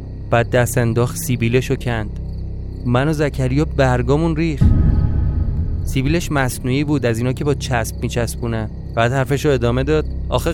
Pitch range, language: 105-140 Hz, Persian